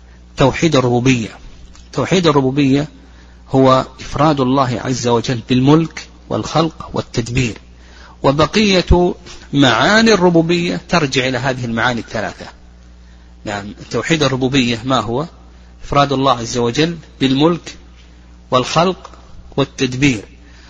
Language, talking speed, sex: Arabic, 95 wpm, male